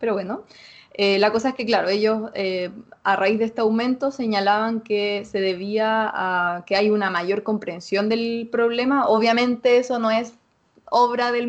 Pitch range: 200-240 Hz